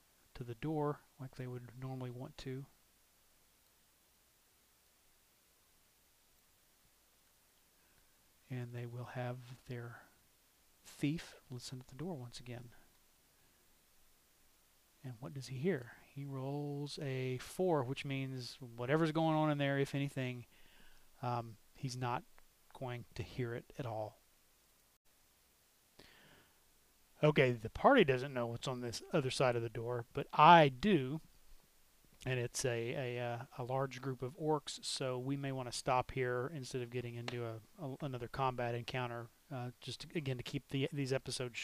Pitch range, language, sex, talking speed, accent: 120-140 Hz, English, male, 140 wpm, American